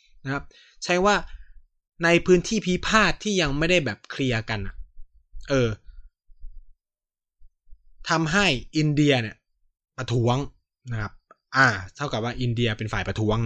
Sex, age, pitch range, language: male, 20-39, 105-155 Hz, Thai